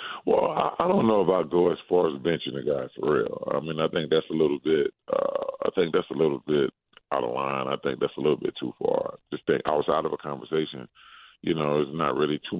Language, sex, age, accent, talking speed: English, female, 40-59, American, 250 wpm